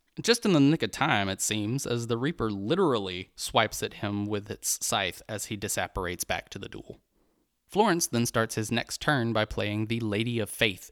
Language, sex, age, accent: English, male, 20-39, American